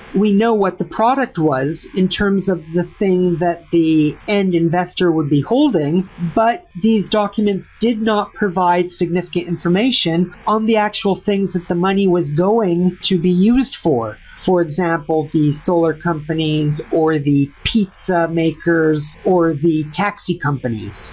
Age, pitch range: 40-59, 165-205 Hz